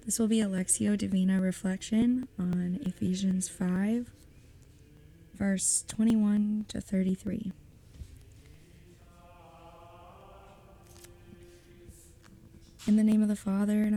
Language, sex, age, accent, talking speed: English, female, 20-39, American, 85 wpm